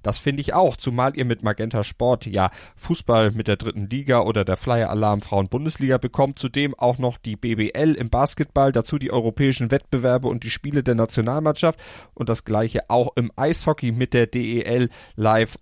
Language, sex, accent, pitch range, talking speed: German, male, German, 110-140 Hz, 175 wpm